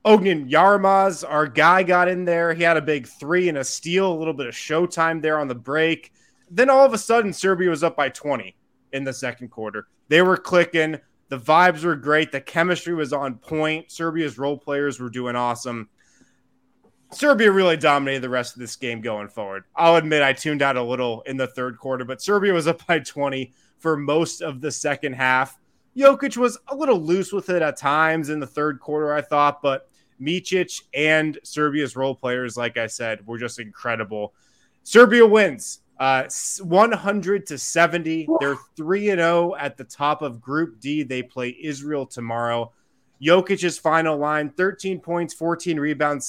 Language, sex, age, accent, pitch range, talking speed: English, male, 20-39, American, 135-175 Hz, 185 wpm